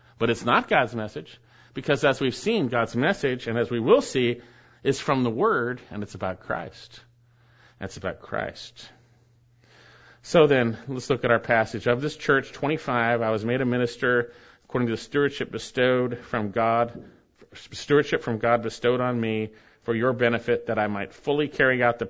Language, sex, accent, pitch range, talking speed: English, male, American, 120-170 Hz, 180 wpm